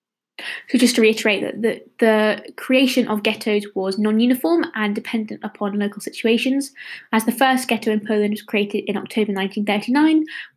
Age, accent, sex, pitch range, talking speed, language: 20-39, British, female, 205-255 Hz, 160 wpm, English